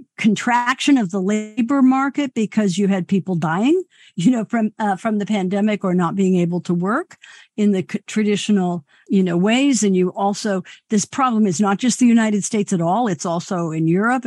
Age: 50-69